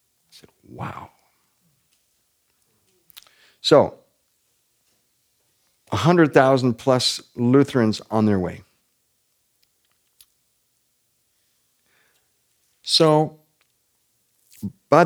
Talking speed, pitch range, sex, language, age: 40 wpm, 110-140 Hz, male, English, 50-69